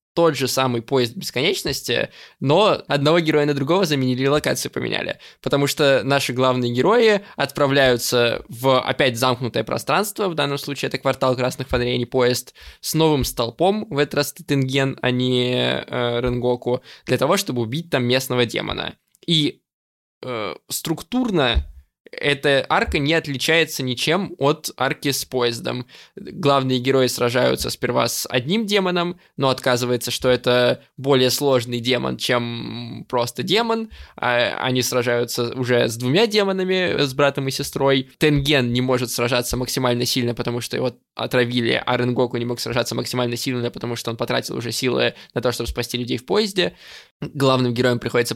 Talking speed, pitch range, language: 155 wpm, 120-145 Hz, Russian